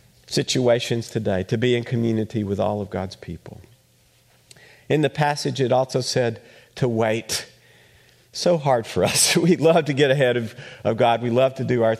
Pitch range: 110-130 Hz